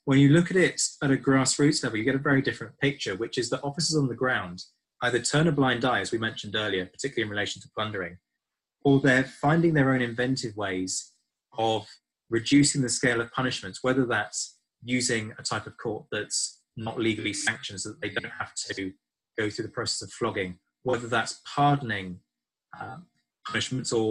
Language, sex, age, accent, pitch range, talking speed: English, male, 20-39, British, 115-145 Hz, 190 wpm